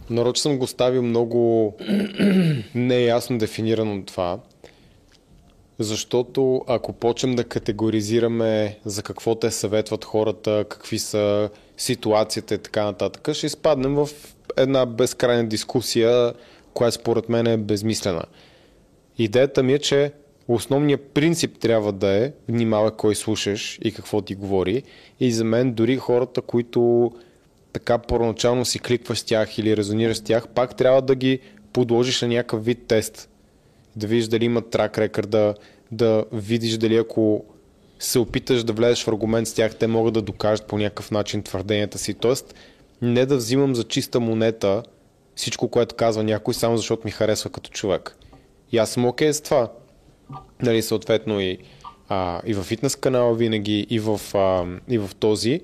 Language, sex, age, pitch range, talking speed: Bulgarian, male, 20-39, 105-125 Hz, 155 wpm